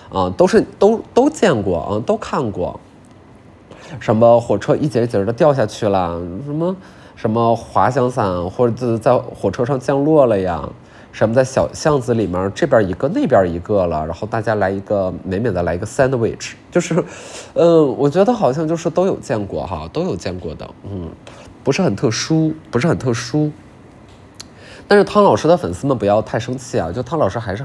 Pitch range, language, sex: 100-150 Hz, Chinese, male